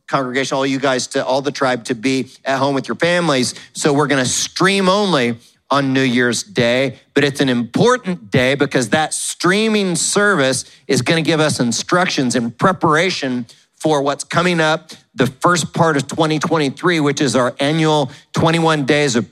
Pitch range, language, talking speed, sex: 130-165 Hz, English, 180 wpm, male